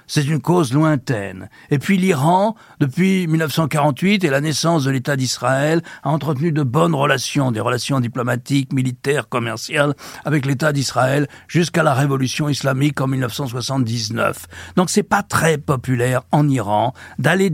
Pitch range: 125-170 Hz